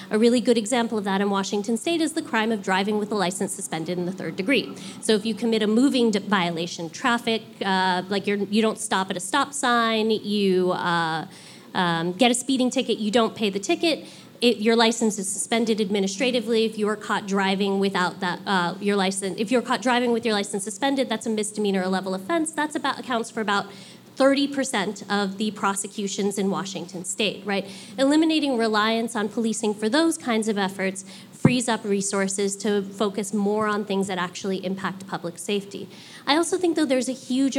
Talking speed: 195 wpm